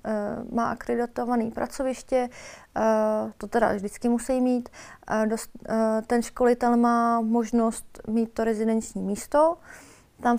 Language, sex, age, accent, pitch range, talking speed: Czech, female, 30-49, native, 230-260 Hz, 100 wpm